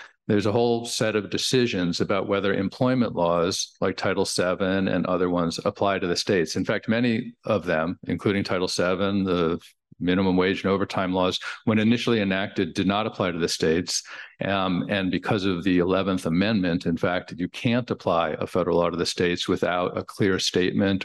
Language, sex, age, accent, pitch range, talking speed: English, male, 50-69, American, 95-115 Hz, 185 wpm